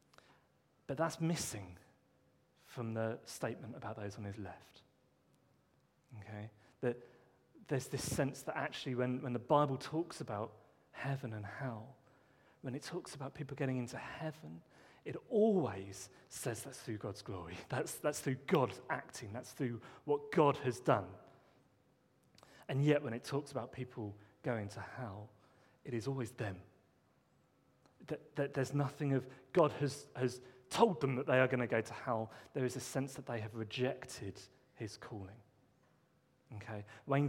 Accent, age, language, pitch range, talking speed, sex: British, 40-59, English, 110-145 Hz, 155 wpm, male